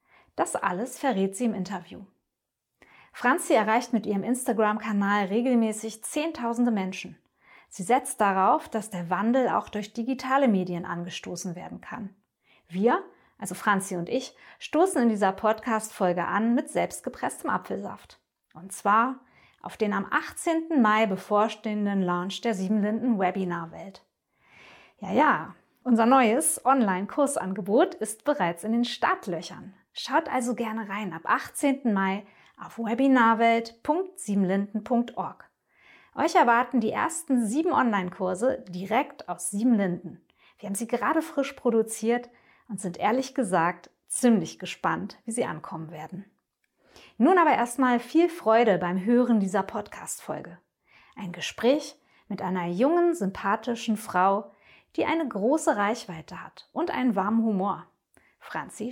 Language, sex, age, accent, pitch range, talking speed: German, female, 20-39, German, 195-255 Hz, 120 wpm